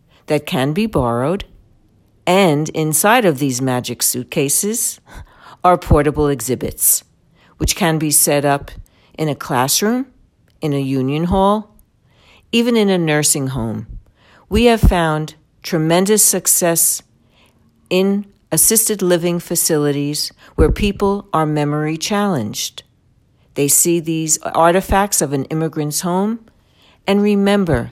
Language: English